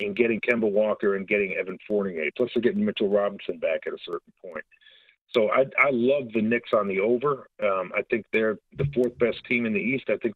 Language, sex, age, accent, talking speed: English, male, 50-69, American, 225 wpm